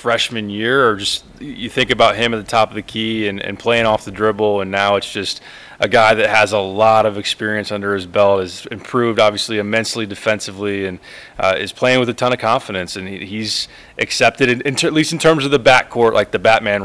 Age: 20-39